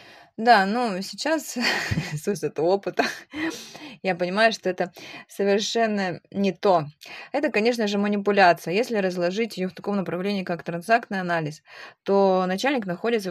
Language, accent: Russian, native